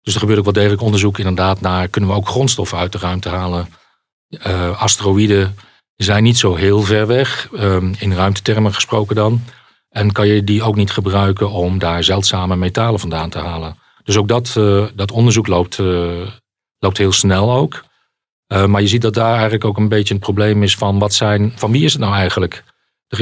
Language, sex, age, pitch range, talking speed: Dutch, male, 40-59, 90-105 Hz, 205 wpm